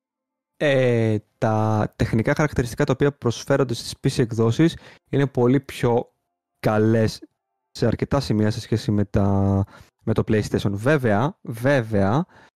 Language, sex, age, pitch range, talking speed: Greek, male, 20-39, 105-130 Hz, 125 wpm